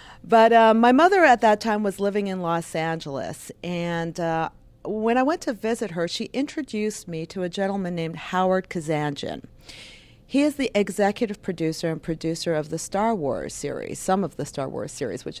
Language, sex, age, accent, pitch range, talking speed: English, female, 40-59, American, 160-215 Hz, 185 wpm